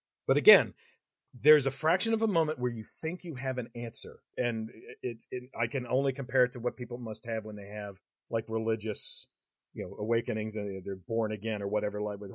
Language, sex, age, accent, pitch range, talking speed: English, male, 40-59, American, 115-145 Hz, 220 wpm